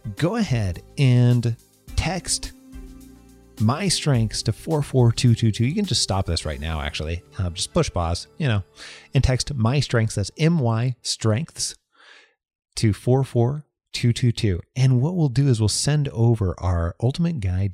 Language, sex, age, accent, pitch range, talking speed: English, male, 30-49, American, 100-130 Hz, 140 wpm